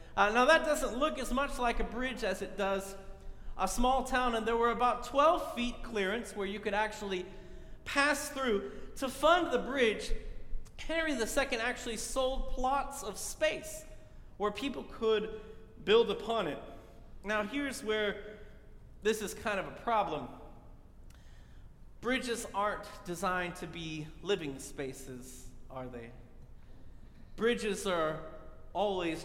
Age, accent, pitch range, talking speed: 30-49, American, 180-250 Hz, 135 wpm